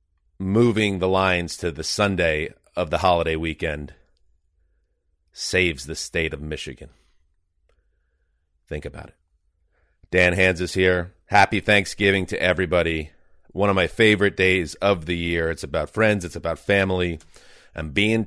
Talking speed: 140 wpm